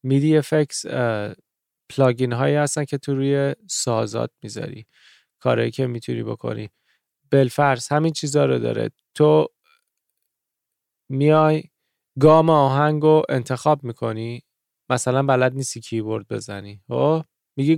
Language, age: Persian, 20-39